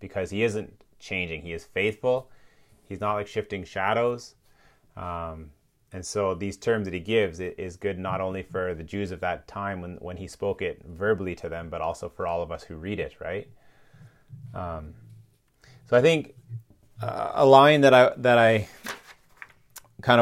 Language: English